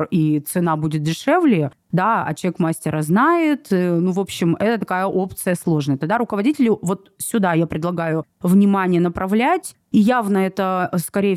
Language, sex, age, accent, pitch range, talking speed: Russian, female, 30-49, native, 170-210 Hz, 150 wpm